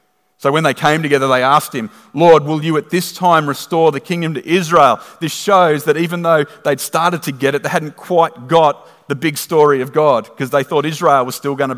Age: 40-59